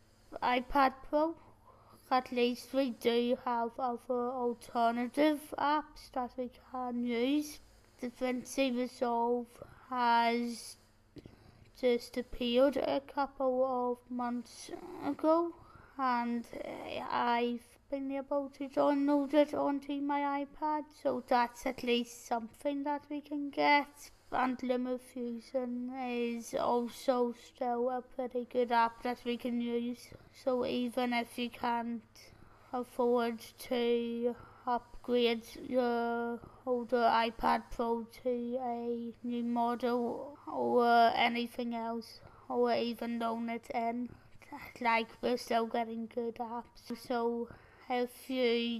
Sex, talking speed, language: female, 110 wpm, English